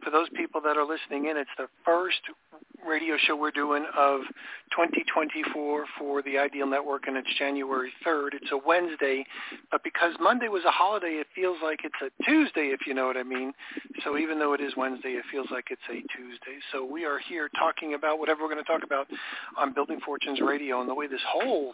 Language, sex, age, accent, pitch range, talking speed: English, male, 50-69, American, 140-160 Hz, 215 wpm